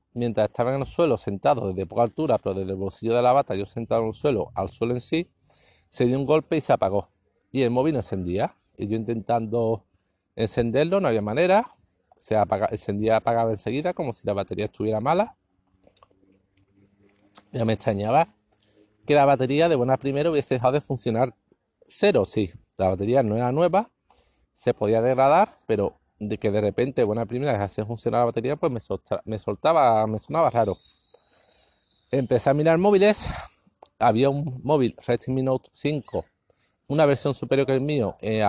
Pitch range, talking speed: 105-140 Hz, 180 wpm